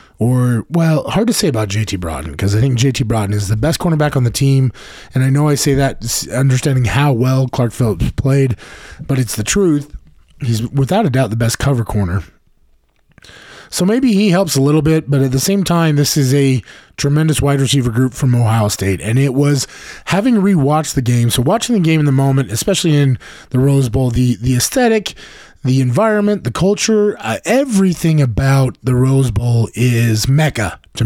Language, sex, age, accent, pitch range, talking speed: English, male, 20-39, American, 120-150 Hz, 195 wpm